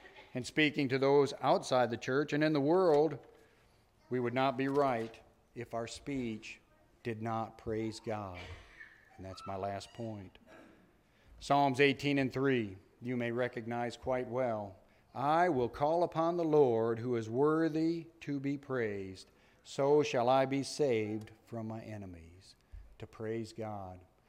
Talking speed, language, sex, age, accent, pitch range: 150 wpm, English, male, 50-69, American, 110-145 Hz